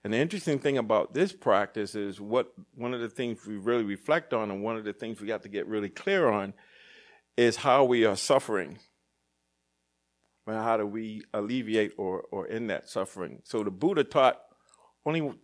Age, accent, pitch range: 50-69, American, 85-115 Hz